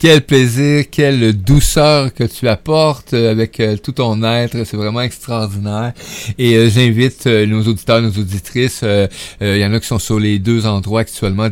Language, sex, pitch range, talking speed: French, male, 105-135 Hz, 180 wpm